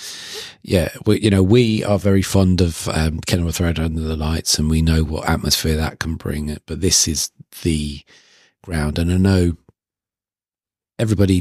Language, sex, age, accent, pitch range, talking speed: English, male, 40-59, British, 80-100 Hz, 175 wpm